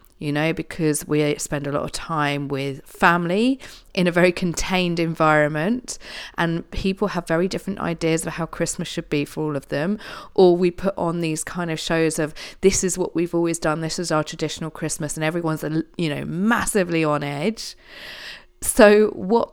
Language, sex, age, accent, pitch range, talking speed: English, female, 30-49, British, 150-185 Hz, 185 wpm